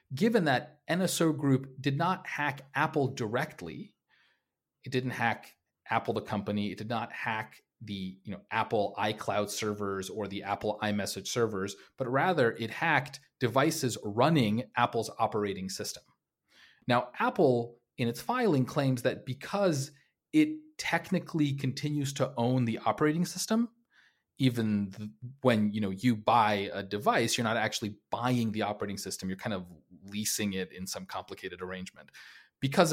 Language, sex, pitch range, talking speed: English, male, 105-135 Hz, 140 wpm